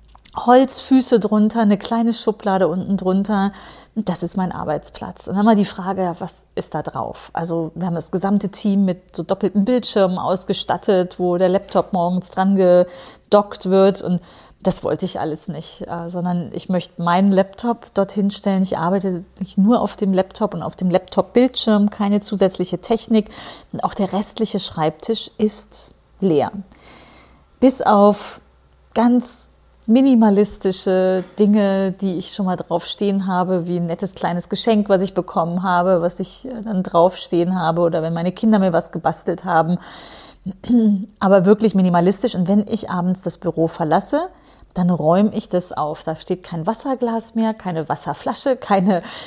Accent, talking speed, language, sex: German, 155 wpm, German, female